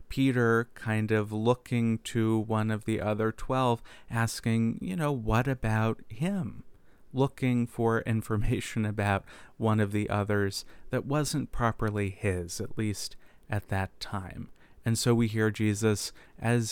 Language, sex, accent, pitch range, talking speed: English, male, American, 105-120 Hz, 140 wpm